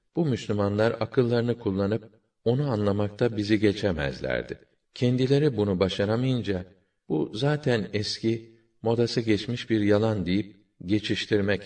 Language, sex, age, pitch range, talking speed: Turkish, male, 50-69, 95-105 Hz, 105 wpm